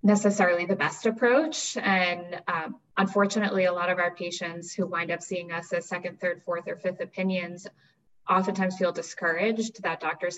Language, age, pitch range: English, 10-29, 175-195 Hz